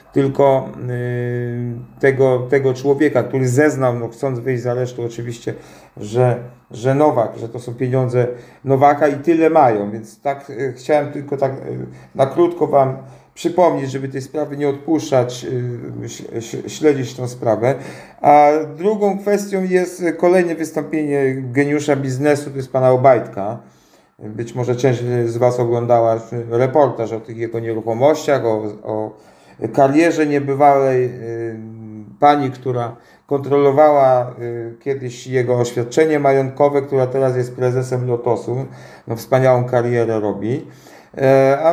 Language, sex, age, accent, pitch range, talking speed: Polish, male, 40-59, native, 120-145 Hz, 120 wpm